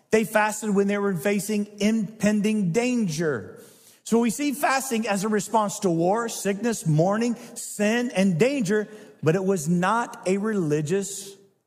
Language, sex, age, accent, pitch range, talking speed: English, male, 50-69, American, 165-220 Hz, 145 wpm